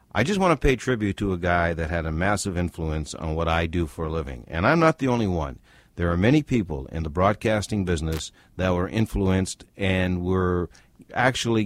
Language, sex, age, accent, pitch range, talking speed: English, male, 60-79, American, 80-110 Hz, 210 wpm